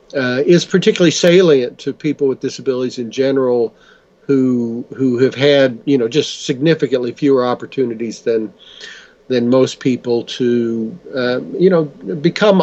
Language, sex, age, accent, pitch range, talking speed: English, male, 50-69, American, 125-150 Hz, 140 wpm